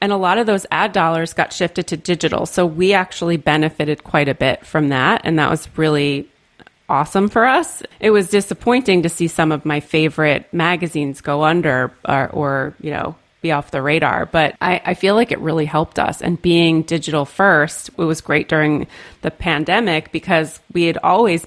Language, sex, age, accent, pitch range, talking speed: English, female, 30-49, American, 150-180 Hz, 195 wpm